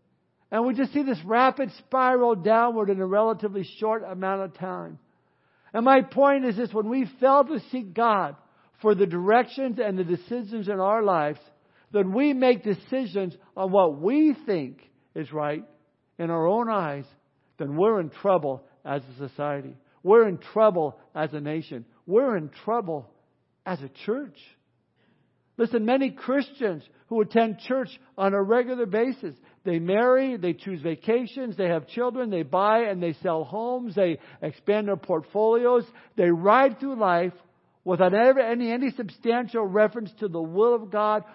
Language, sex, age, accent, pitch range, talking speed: English, male, 60-79, American, 180-240 Hz, 160 wpm